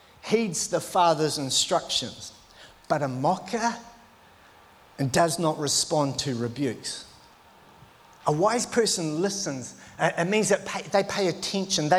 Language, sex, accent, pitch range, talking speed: English, male, Australian, 135-190 Hz, 110 wpm